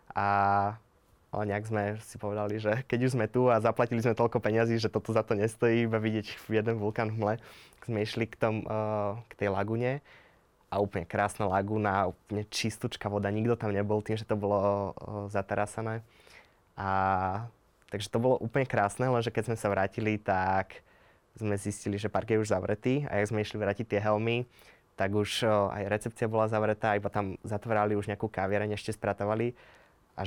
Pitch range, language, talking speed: 100-115 Hz, Slovak, 175 wpm